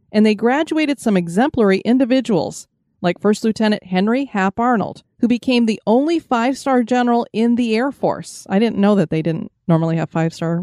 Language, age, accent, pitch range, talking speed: English, 30-49, American, 190-250 Hz, 175 wpm